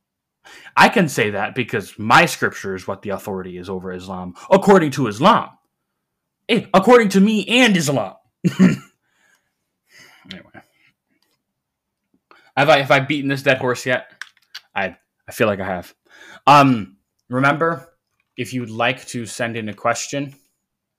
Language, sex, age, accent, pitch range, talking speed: English, male, 20-39, American, 95-130 Hz, 140 wpm